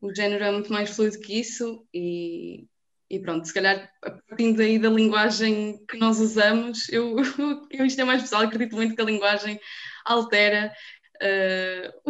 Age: 20-39